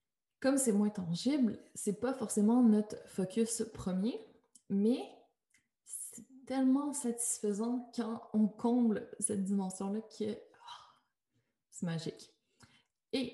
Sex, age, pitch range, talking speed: female, 20-39, 205-250 Hz, 105 wpm